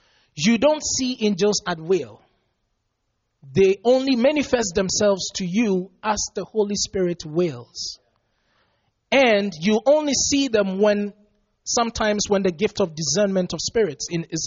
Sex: male